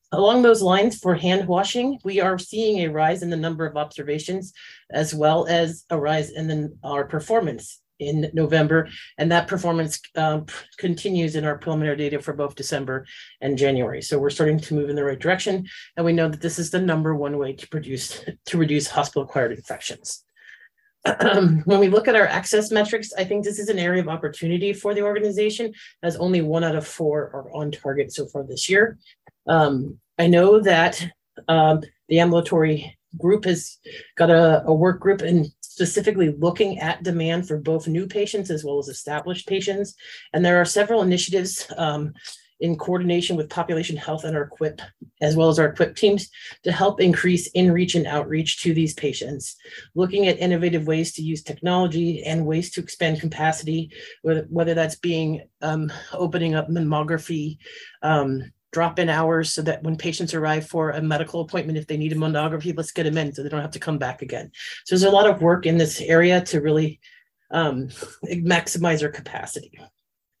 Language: English